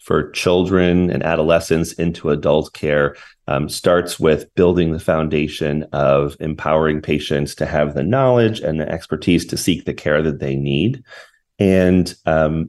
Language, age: English, 30-49